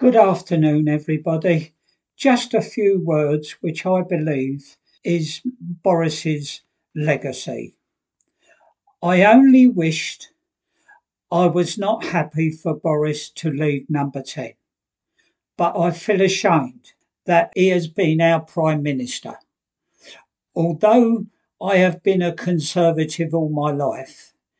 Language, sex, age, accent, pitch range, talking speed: English, male, 60-79, British, 155-195 Hz, 110 wpm